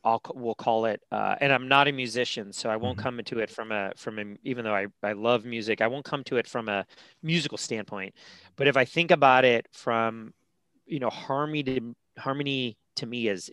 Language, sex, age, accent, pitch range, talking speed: English, male, 30-49, American, 115-150 Hz, 220 wpm